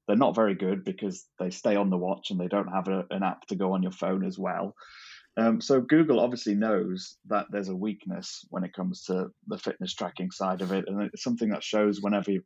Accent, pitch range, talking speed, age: British, 95-105 Hz, 235 wpm, 30-49